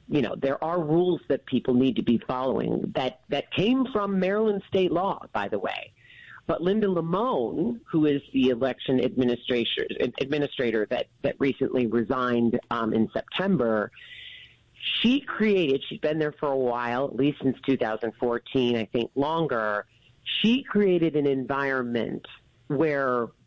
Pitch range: 120-170 Hz